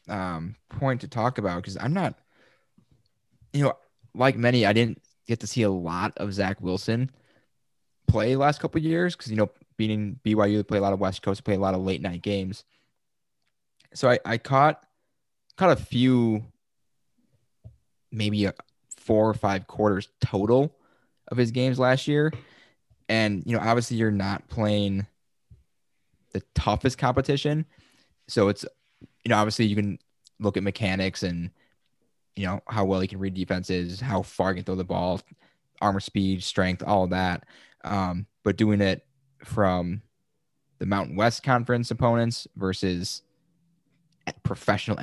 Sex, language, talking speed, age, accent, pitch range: male, English, 155 wpm, 10-29, American, 95-125 Hz